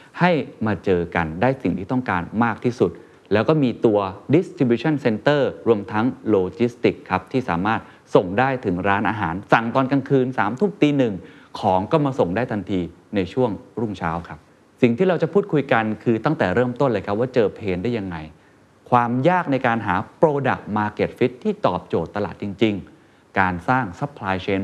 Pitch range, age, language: 100-140 Hz, 30-49, Thai